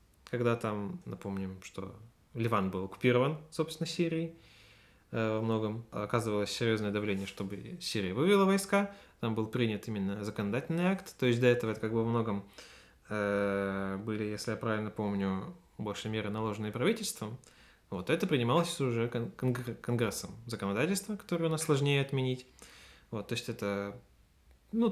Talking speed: 140 wpm